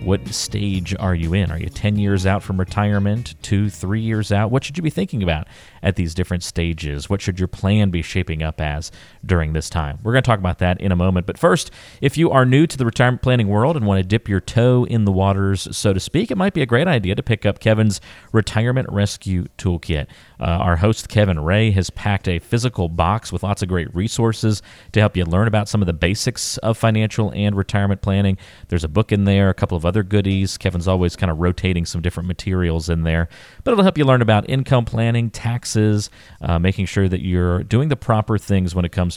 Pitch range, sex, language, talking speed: 90-115 Hz, male, English, 235 wpm